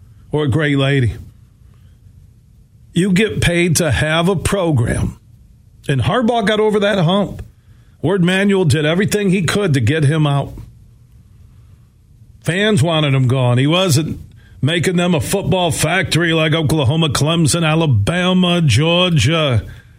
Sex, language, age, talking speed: male, English, 50-69, 125 wpm